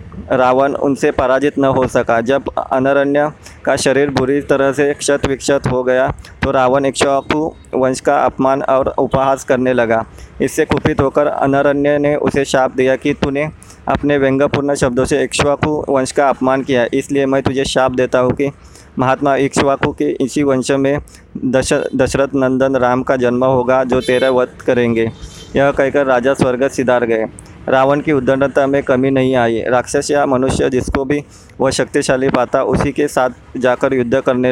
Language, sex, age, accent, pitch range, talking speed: Hindi, male, 20-39, native, 125-140 Hz, 165 wpm